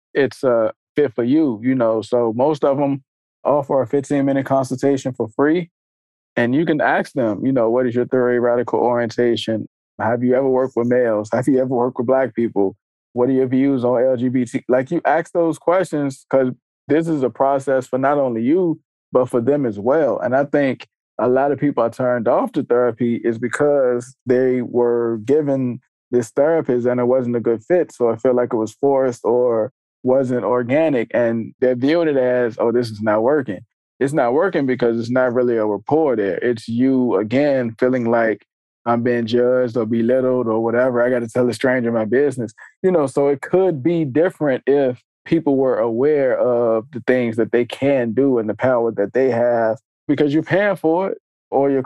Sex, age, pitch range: male, 20-39, 120-135 Hz